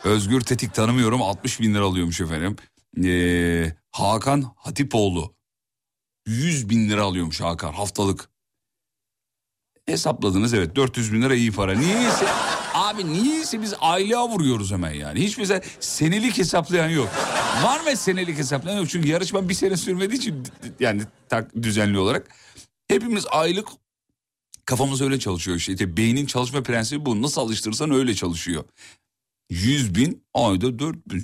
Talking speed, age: 135 wpm, 40-59